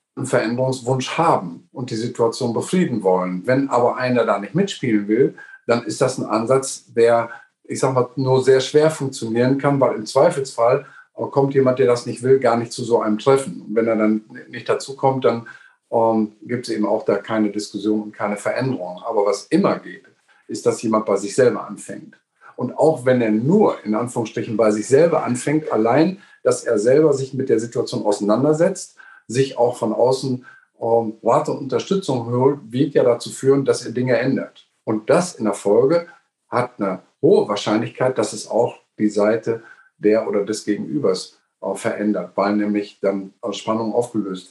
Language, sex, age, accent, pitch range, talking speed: German, male, 50-69, German, 105-135 Hz, 185 wpm